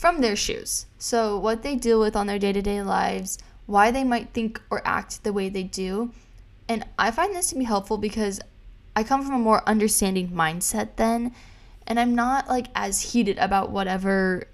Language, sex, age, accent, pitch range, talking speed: English, female, 10-29, American, 195-235 Hz, 190 wpm